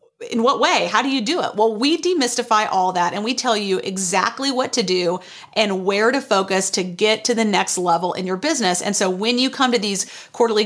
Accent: American